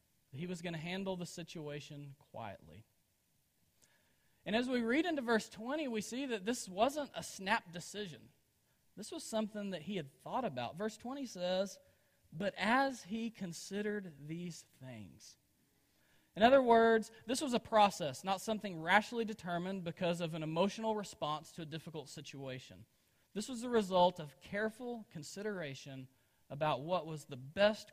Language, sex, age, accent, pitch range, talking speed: English, male, 40-59, American, 140-210 Hz, 155 wpm